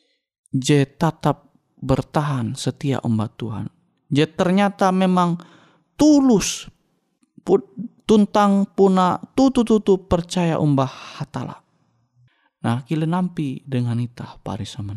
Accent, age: native, 30-49